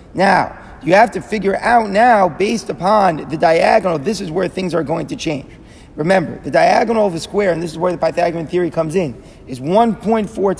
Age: 30-49